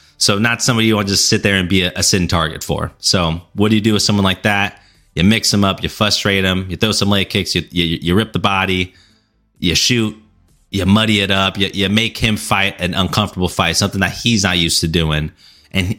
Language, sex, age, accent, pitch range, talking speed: English, male, 30-49, American, 90-105 Hz, 245 wpm